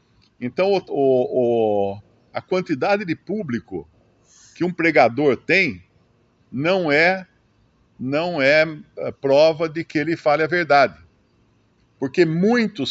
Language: Portuguese